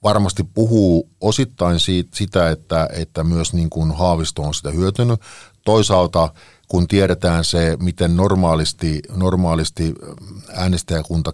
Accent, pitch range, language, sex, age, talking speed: native, 80-95 Hz, Finnish, male, 50-69, 115 wpm